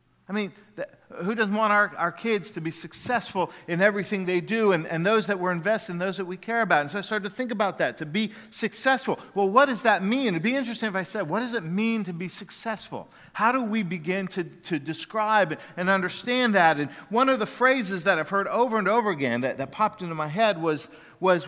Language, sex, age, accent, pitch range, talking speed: English, male, 50-69, American, 155-215 Hz, 235 wpm